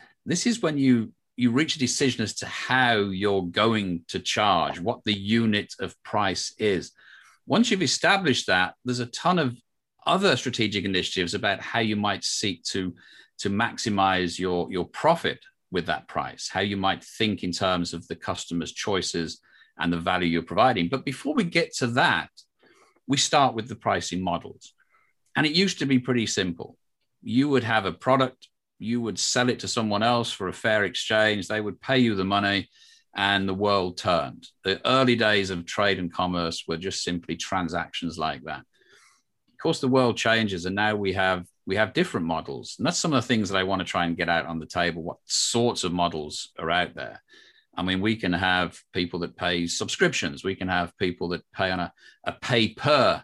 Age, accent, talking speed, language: 40-59, British, 195 wpm, English